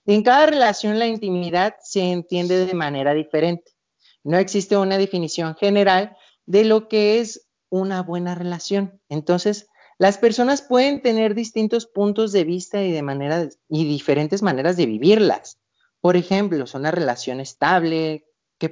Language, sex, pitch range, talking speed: Spanish, male, 145-185 Hz, 150 wpm